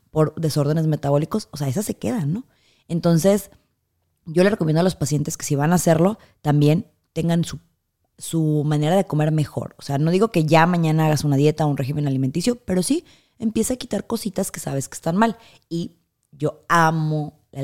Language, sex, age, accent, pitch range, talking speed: Spanish, female, 20-39, Mexican, 140-170 Hz, 195 wpm